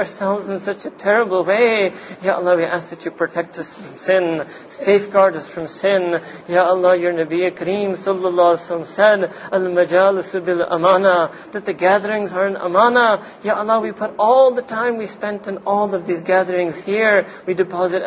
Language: English